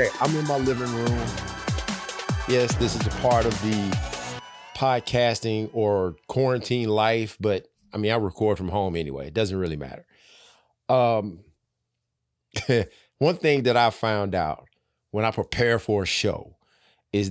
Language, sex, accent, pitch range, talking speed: English, male, American, 100-120 Hz, 145 wpm